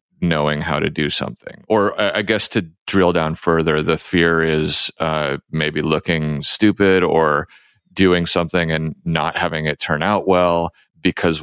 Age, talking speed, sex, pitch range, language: 30-49, 160 wpm, male, 80-95 Hz, English